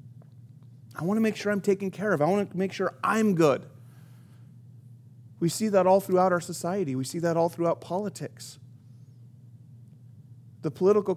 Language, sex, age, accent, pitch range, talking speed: English, male, 30-49, American, 130-200 Hz, 165 wpm